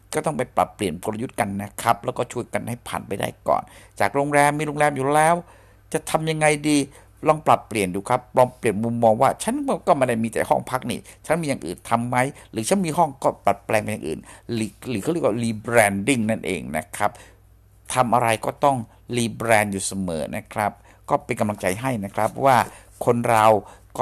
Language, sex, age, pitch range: Thai, male, 60-79, 100-130 Hz